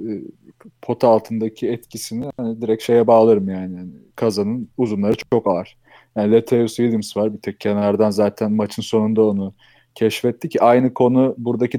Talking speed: 135 wpm